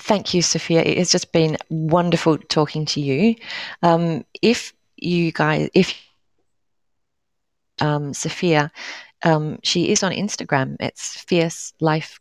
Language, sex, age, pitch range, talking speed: English, female, 30-49, 145-170 Hz, 130 wpm